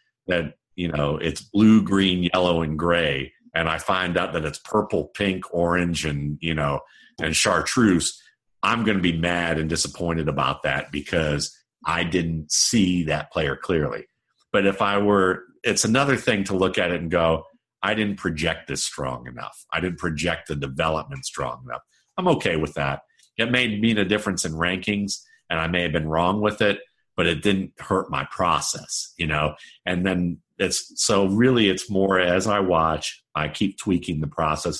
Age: 50-69